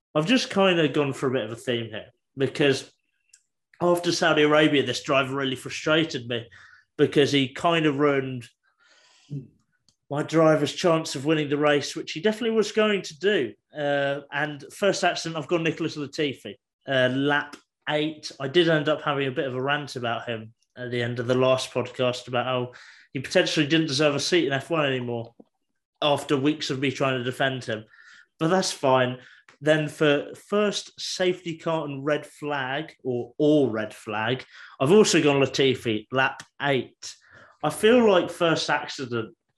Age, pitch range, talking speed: 30-49, 130-160 Hz, 175 wpm